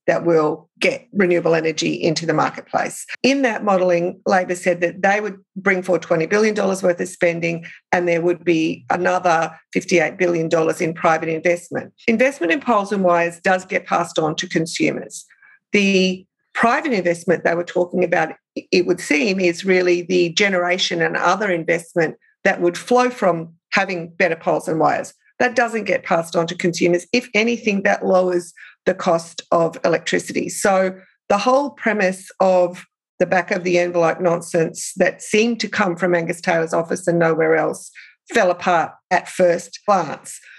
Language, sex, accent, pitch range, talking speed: English, female, Australian, 170-210 Hz, 165 wpm